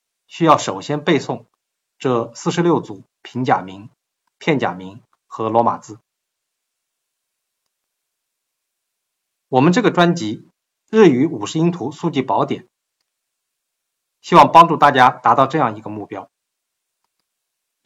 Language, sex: Chinese, male